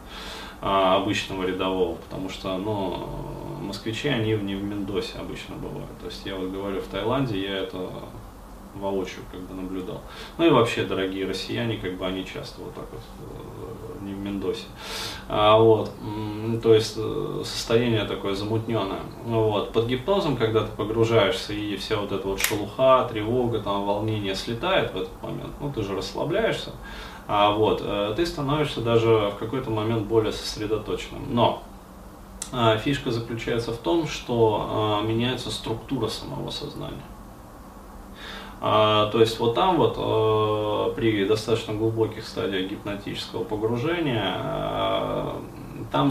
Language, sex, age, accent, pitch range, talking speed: Russian, male, 20-39, native, 100-115 Hz, 130 wpm